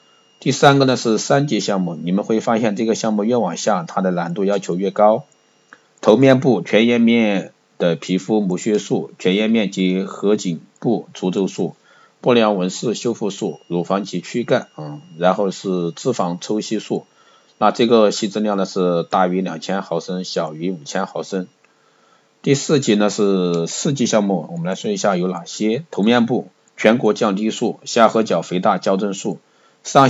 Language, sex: Chinese, male